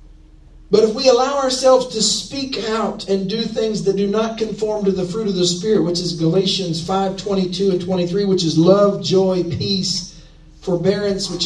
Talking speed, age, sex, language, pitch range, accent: 180 wpm, 50-69, male, English, 170-220 Hz, American